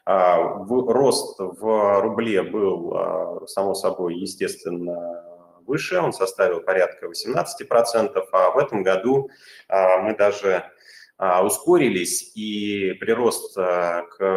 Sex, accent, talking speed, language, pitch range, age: male, native, 90 wpm, Russian, 90-135 Hz, 20-39